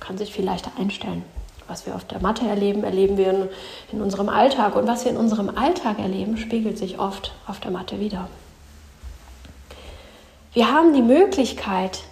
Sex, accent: female, German